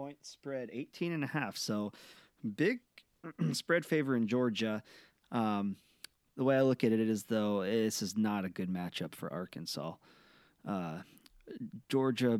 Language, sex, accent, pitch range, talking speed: English, male, American, 105-125 Hz, 155 wpm